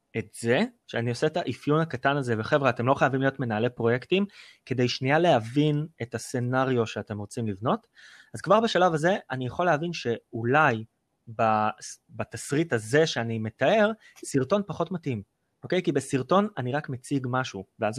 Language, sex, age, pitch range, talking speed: Hebrew, male, 20-39, 120-160 Hz, 155 wpm